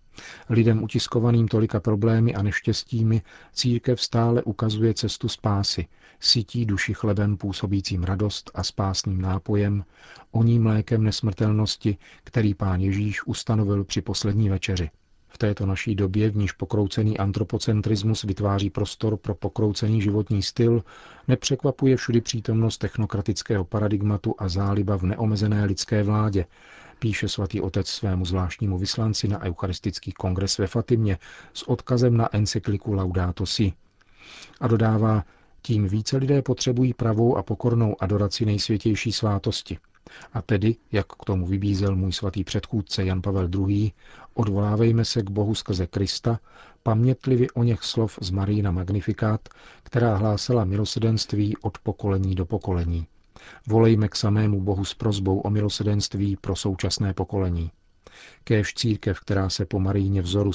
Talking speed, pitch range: 130 wpm, 95-110 Hz